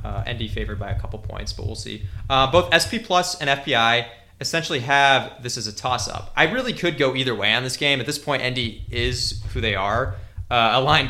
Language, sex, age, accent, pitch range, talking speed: English, male, 20-39, American, 105-135 Hz, 225 wpm